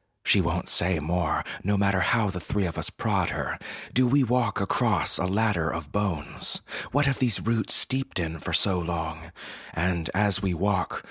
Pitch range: 80-105 Hz